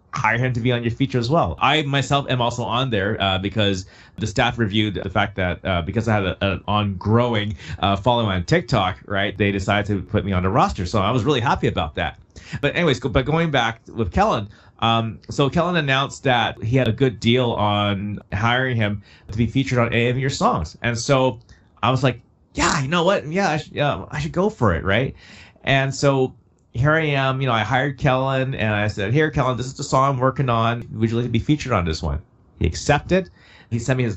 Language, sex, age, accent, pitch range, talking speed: English, male, 30-49, American, 105-145 Hz, 230 wpm